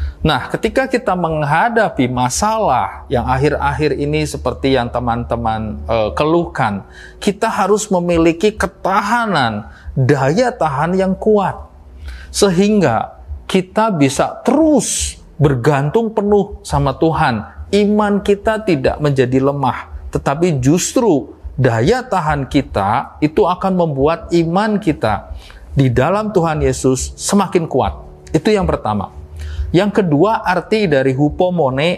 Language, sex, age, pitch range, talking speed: Indonesian, male, 40-59, 125-195 Hz, 110 wpm